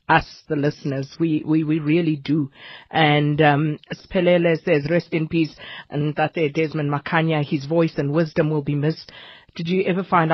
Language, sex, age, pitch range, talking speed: English, female, 50-69, 145-165 Hz, 175 wpm